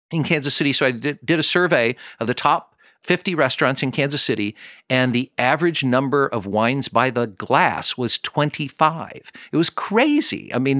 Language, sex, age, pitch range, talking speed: English, male, 50-69, 115-155 Hz, 180 wpm